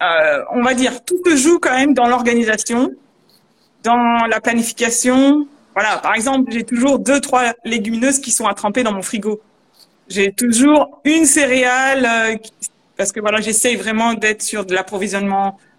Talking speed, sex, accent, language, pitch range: 165 wpm, female, French, French, 205-265 Hz